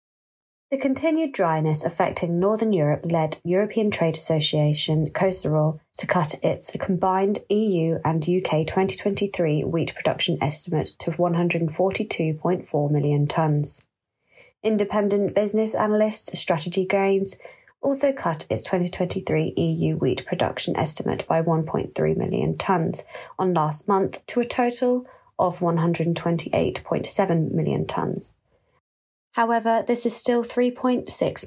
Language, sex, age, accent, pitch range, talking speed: English, female, 20-39, British, 165-215 Hz, 110 wpm